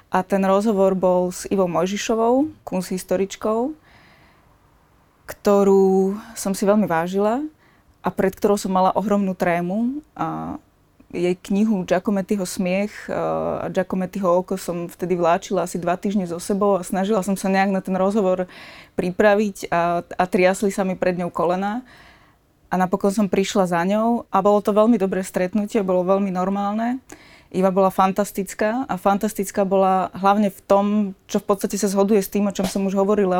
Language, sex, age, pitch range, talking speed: Slovak, female, 20-39, 185-205 Hz, 160 wpm